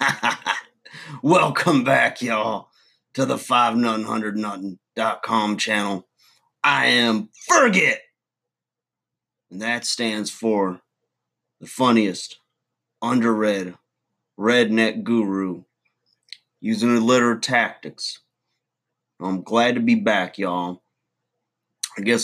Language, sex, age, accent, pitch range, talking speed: English, male, 30-49, American, 100-120 Hz, 85 wpm